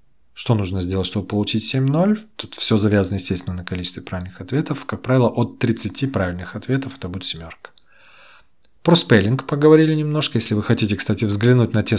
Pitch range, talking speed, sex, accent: 95-125 Hz, 170 wpm, male, native